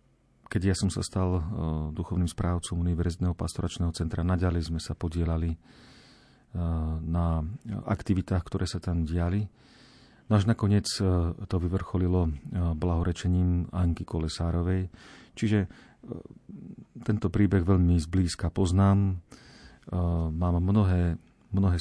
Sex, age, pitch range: male, 40-59, 85-95 Hz